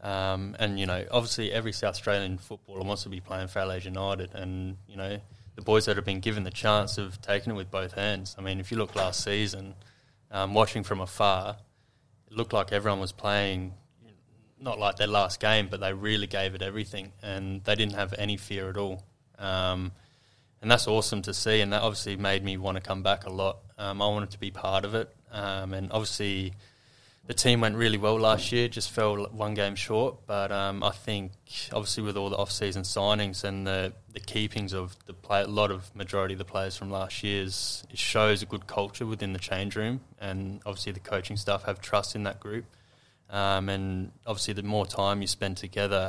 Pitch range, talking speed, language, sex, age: 95-110 Hz, 215 wpm, English, male, 20-39